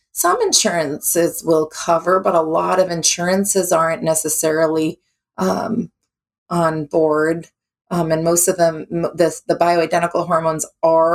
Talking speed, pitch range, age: 130 wpm, 150-170 Hz, 30-49